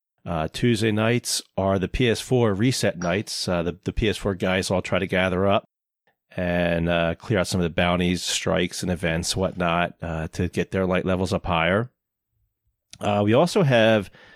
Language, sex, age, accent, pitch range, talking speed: English, male, 30-49, American, 90-110 Hz, 175 wpm